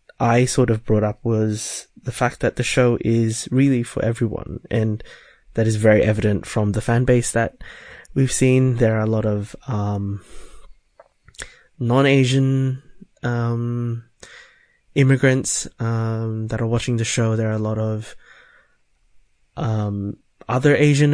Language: English